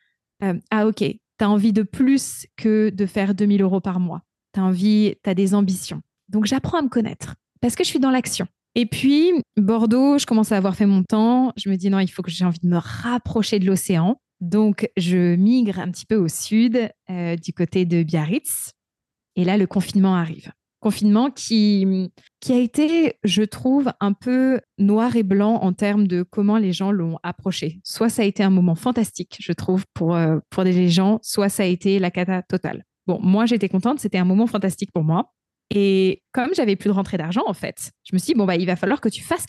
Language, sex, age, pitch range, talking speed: French, female, 20-39, 185-220 Hz, 220 wpm